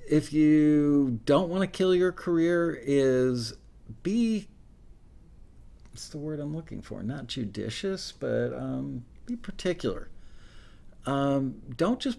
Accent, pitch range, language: American, 120-155 Hz, English